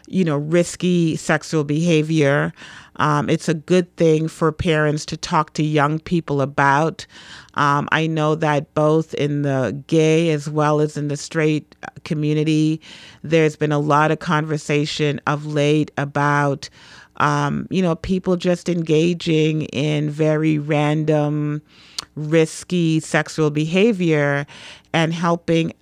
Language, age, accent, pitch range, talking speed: English, 40-59, American, 145-165 Hz, 130 wpm